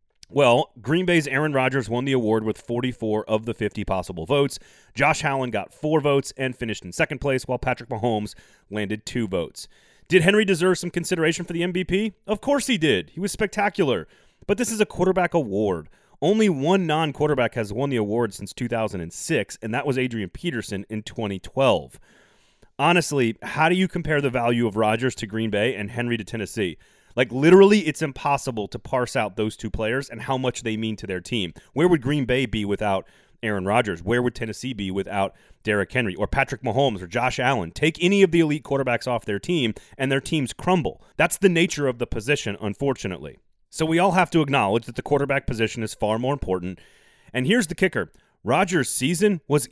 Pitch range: 110-160 Hz